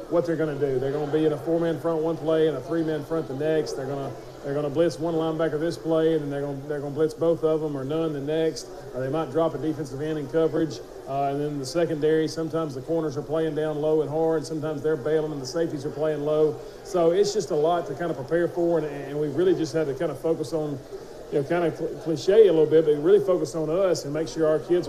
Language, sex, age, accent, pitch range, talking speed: English, male, 40-59, American, 145-165 Hz, 275 wpm